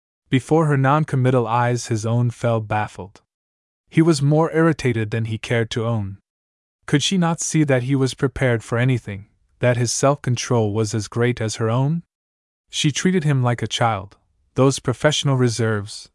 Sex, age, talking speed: male, 20-39, 165 wpm